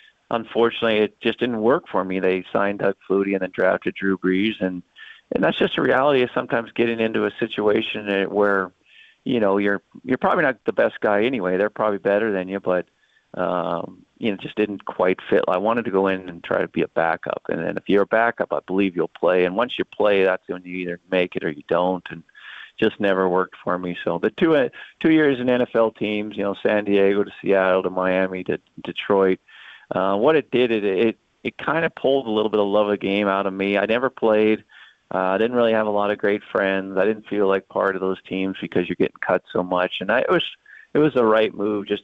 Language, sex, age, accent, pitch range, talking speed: English, male, 40-59, American, 90-105 Hz, 240 wpm